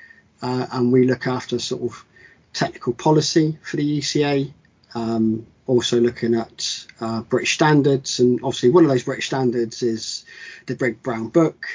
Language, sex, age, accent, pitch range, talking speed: English, male, 40-59, British, 120-140 Hz, 160 wpm